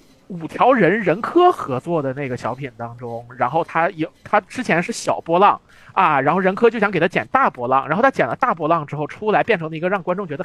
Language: Chinese